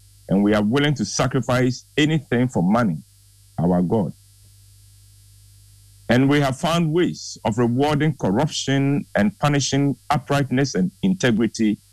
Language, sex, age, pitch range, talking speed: English, male, 50-69, 100-130 Hz, 120 wpm